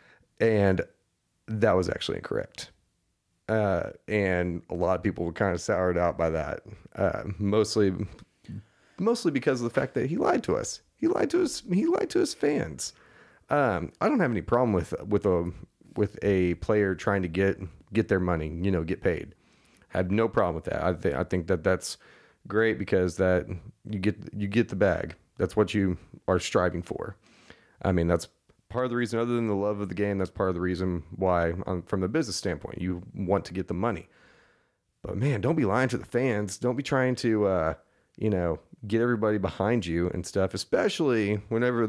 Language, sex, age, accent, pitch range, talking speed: English, male, 30-49, American, 90-110 Hz, 200 wpm